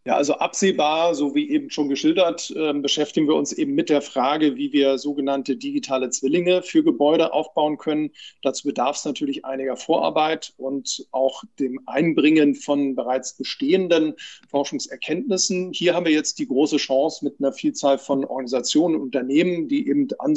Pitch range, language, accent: 140-195 Hz, German, German